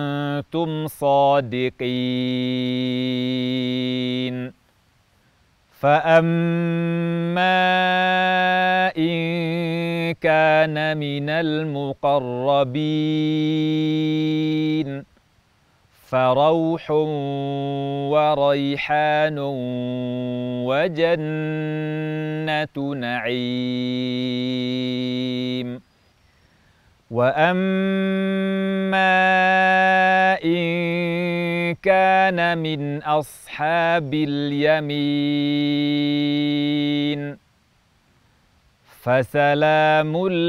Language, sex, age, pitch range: Indonesian, male, 40-59, 130-170 Hz